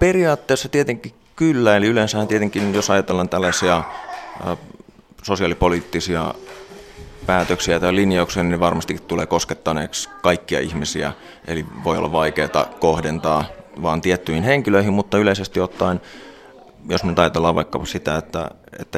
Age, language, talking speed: 30-49, Finnish, 115 wpm